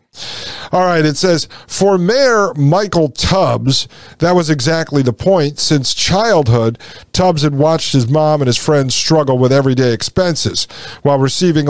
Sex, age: male, 50-69